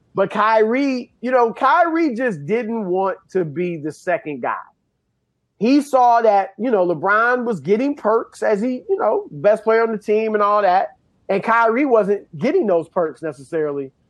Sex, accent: male, American